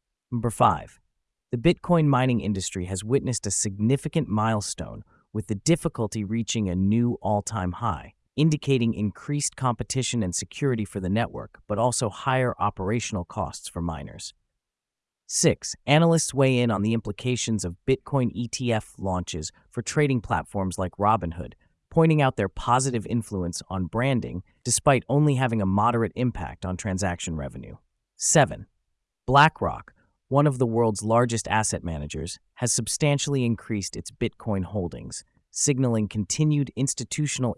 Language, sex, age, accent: English, male, 30-49, American